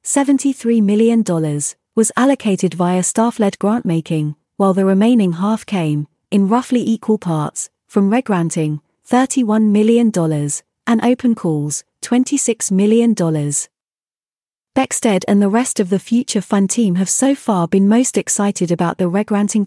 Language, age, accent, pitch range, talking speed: English, 30-49, British, 175-230 Hz, 130 wpm